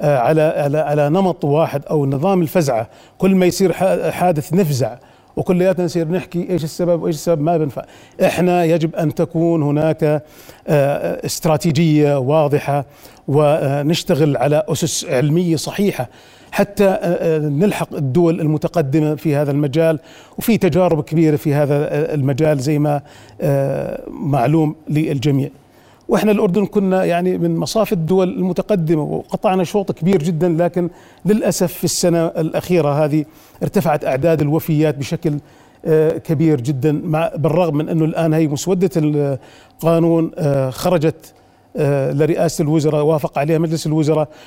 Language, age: Arabic, 40-59